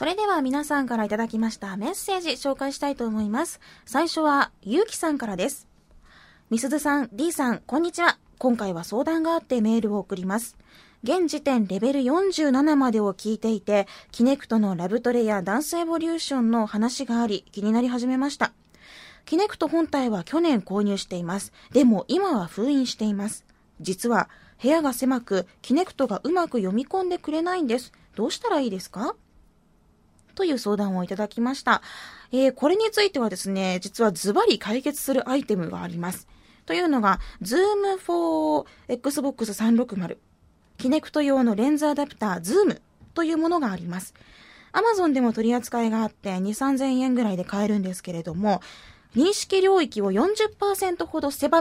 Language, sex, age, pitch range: Japanese, female, 20-39, 205-310 Hz